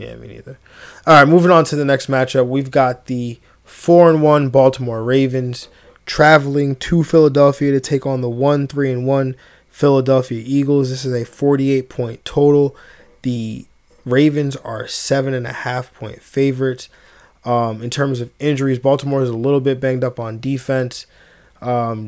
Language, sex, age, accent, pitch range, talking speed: English, male, 20-39, American, 120-140 Hz, 170 wpm